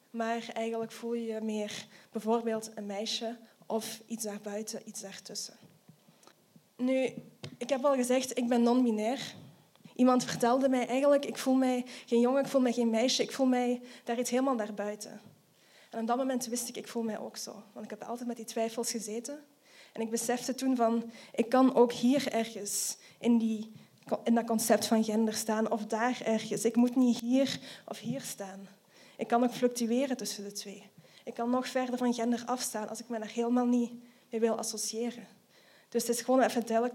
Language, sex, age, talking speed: Dutch, female, 20-39, 195 wpm